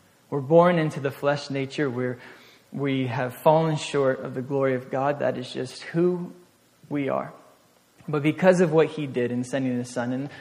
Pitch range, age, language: 140-170 Hz, 20-39, English